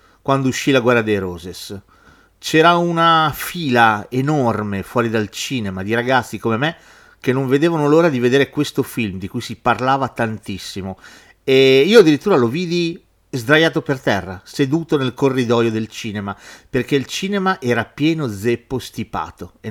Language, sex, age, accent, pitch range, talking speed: Italian, male, 40-59, native, 115-160 Hz, 155 wpm